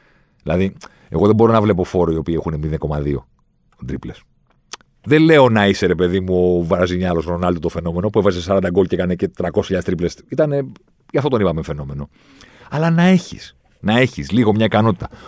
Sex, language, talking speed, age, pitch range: male, Greek, 175 wpm, 50-69, 85-125 Hz